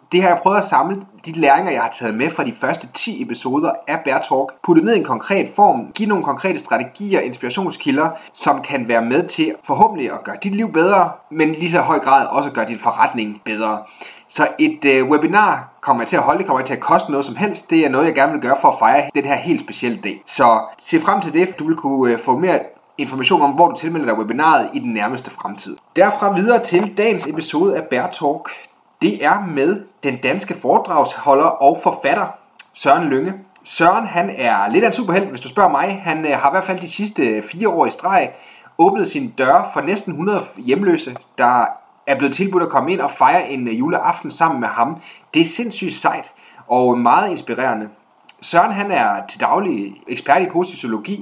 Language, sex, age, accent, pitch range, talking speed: Danish, male, 30-49, native, 140-205 Hz, 215 wpm